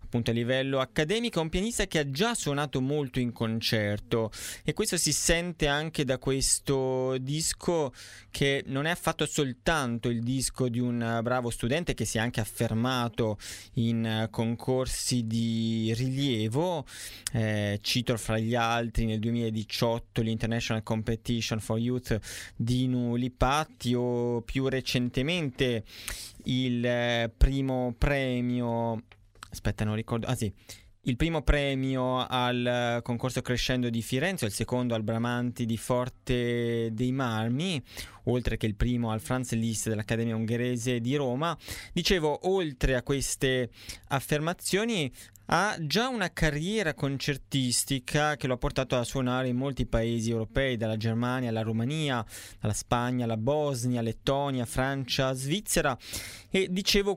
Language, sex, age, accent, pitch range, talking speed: Italian, male, 20-39, native, 115-140 Hz, 130 wpm